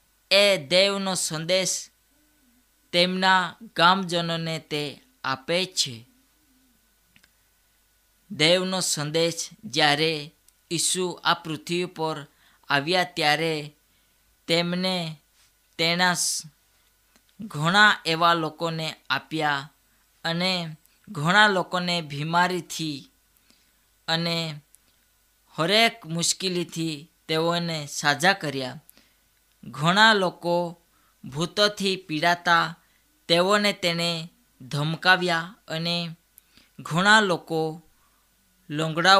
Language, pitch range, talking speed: Hindi, 150-185 Hz, 50 wpm